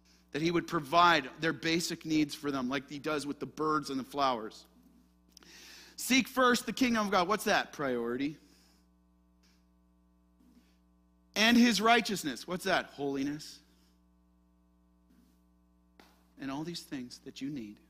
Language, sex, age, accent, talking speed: English, male, 40-59, American, 135 wpm